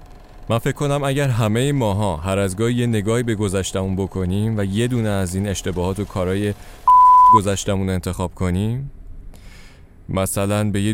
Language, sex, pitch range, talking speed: Persian, male, 95-145 Hz, 170 wpm